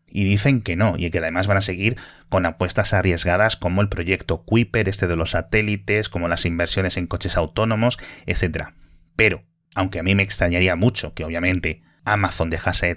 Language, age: Spanish, 30-49